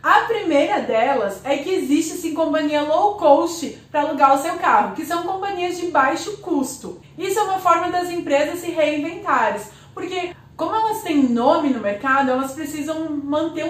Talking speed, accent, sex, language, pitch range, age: 170 wpm, Brazilian, female, Portuguese, 280-360 Hz, 20-39